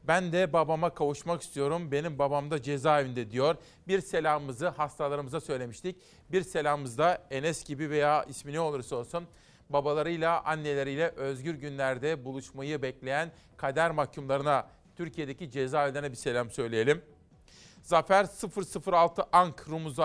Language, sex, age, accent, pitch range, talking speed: Turkish, male, 40-59, native, 145-175 Hz, 125 wpm